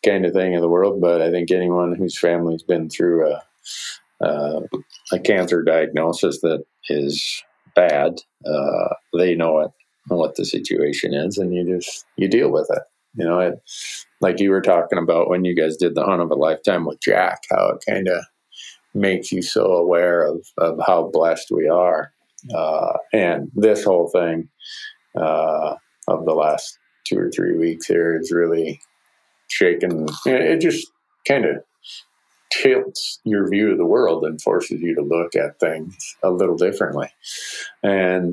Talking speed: 170 wpm